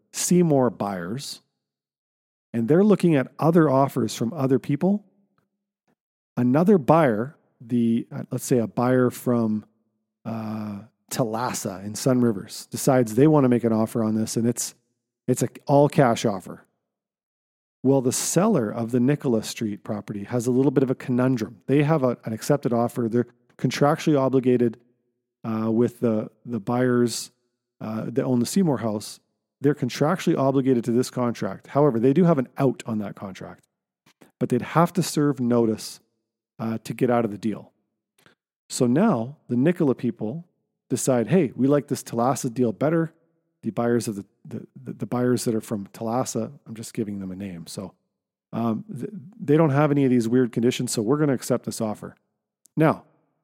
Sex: male